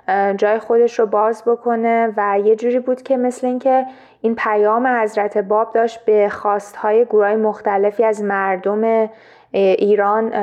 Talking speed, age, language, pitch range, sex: 140 wpm, 20-39, Persian, 205-240 Hz, female